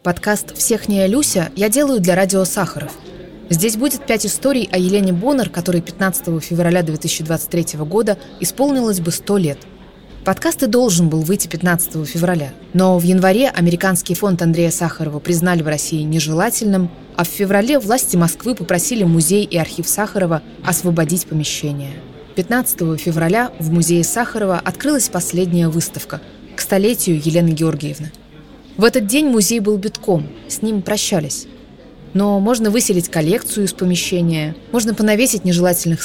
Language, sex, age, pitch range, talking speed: English, female, 20-39, 170-215 Hz, 140 wpm